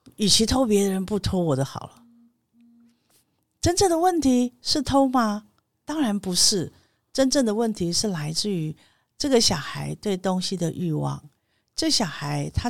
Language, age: Chinese, 50-69